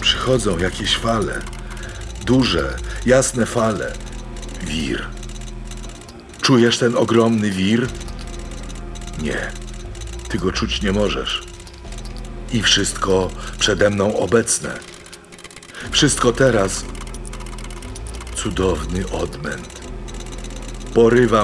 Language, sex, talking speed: Polish, male, 75 wpm